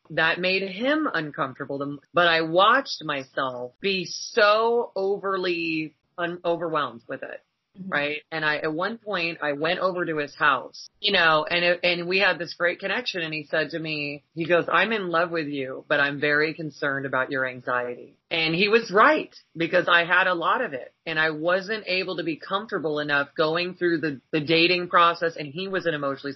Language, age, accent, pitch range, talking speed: English, 30-49, American, 150-185 Hz, 195 wpm